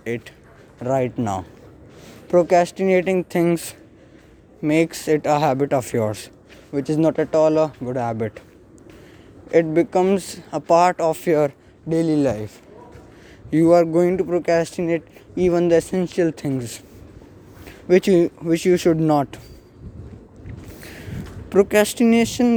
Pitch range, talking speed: 125-175 Hz, 115 wpm